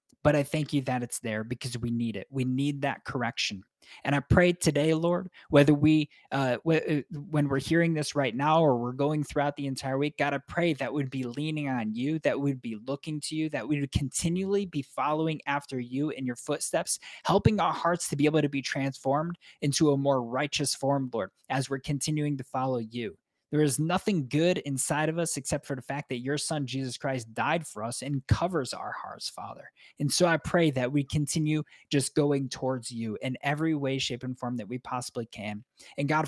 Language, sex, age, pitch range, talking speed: English, male, 20-39, 125-150 Hz, 215 wpm